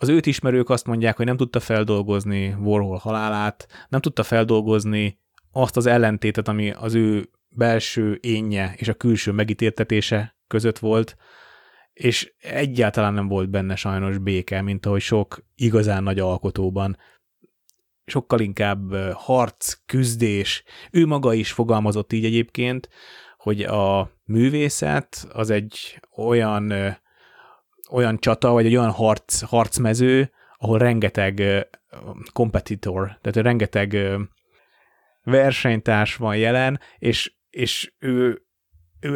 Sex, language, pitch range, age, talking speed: male, Hungarian, 100-120 Hz, 30-49, 115 wpm